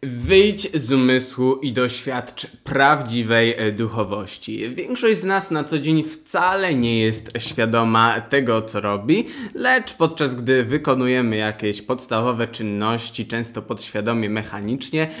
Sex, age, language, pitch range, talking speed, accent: male, 20-39, Polish, 110-145 Hz, 120 wpm, native